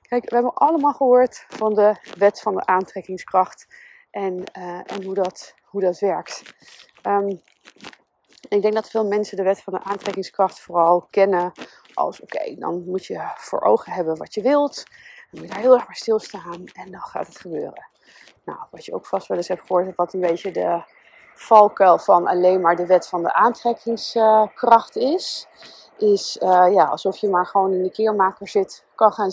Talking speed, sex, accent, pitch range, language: 180 wpm, female, Dutch, 190-245 Hz, Dutch